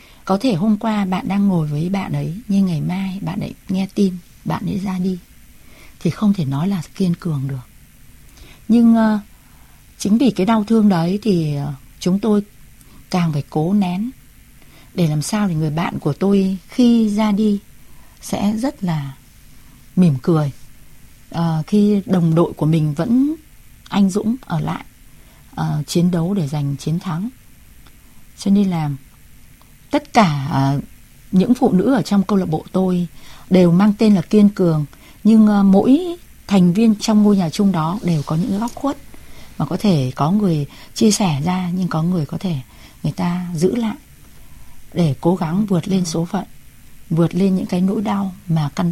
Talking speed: 180 wpm